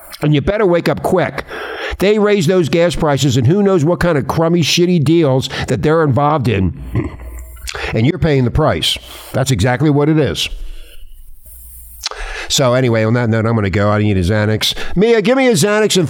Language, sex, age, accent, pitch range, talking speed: English, male, 50-69, American, 105-175 Hz, 200 wpm